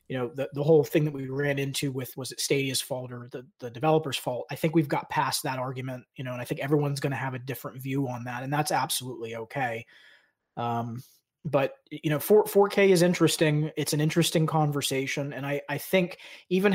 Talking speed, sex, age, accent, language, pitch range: 220 wpm, male, 20-39, American, English, 135-160 Hz